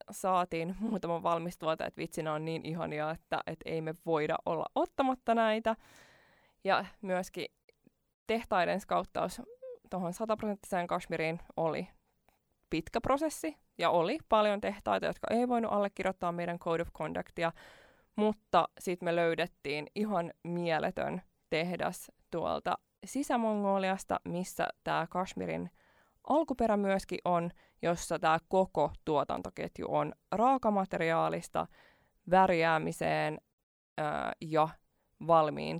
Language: Finnish